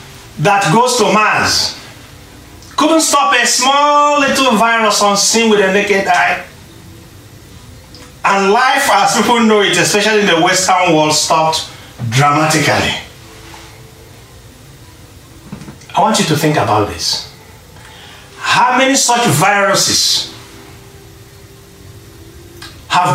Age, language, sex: 40-59, English, male